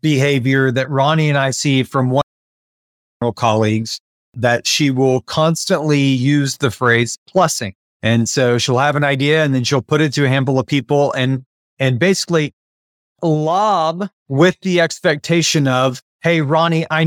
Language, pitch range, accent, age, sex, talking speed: English, 130-160 Hz, American, 30-49, male, 160 wpm